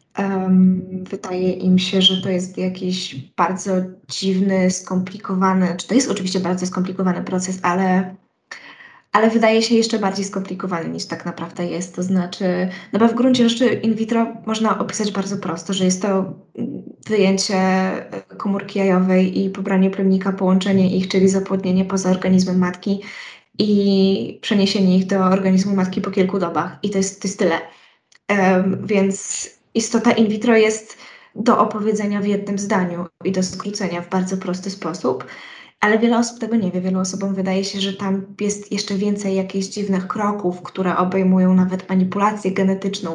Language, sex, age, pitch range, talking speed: Polish, female, 20-39, 185-205 Hz, 155 wpm